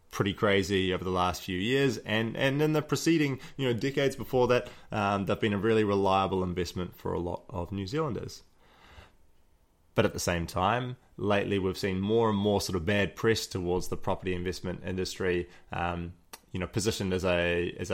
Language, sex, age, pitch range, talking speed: English, male, 20-39, 90-110 Hz, 190 wpm